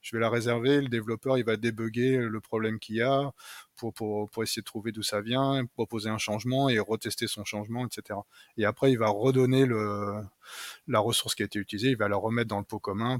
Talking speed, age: 225 wpm, 20-39